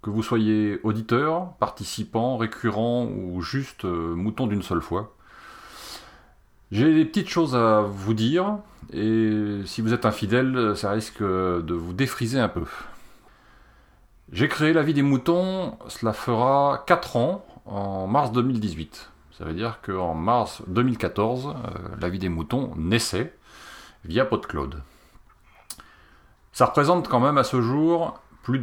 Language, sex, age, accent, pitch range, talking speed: French, male, 40-59, French, 100-135 Hz, 140 wpm